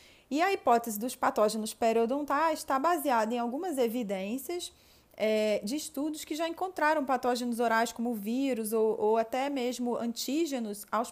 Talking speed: 150 wpm